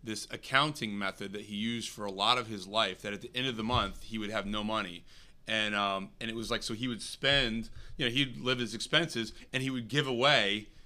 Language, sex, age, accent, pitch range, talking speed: English, male, 30-49, American, 105-125 Hz, 250 wpm